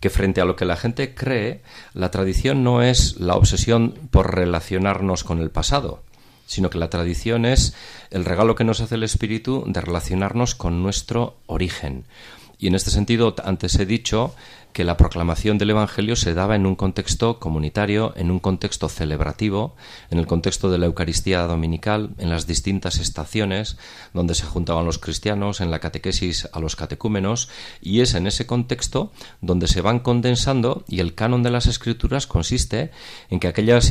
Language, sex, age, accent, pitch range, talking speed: Spanish, male, 40-59, Spanish, 85-115 Hz, 175 wpm